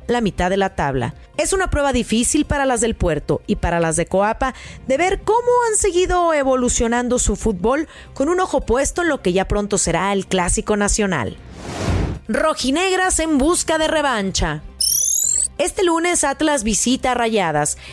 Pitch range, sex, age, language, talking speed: 195-275 Hz, female, 30-49, Spanish, 165 wpm